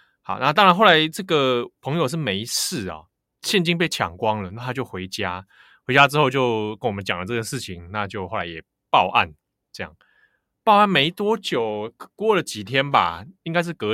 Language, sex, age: Chinese, male, 20-39